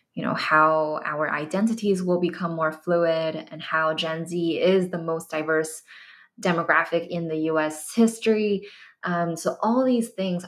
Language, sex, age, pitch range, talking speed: English, female, 20-39, 160-195 Hz, 155 wpm